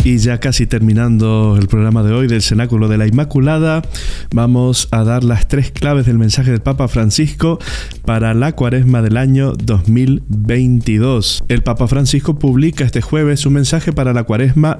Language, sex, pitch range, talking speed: Spanish, male, 115-140 Hz, 165 wpm